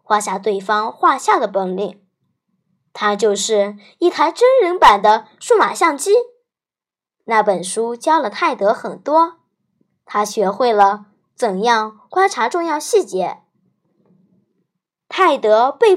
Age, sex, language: 20-39, male, Chinese